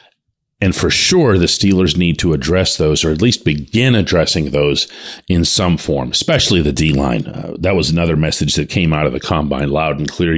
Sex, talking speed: male, 200 wpm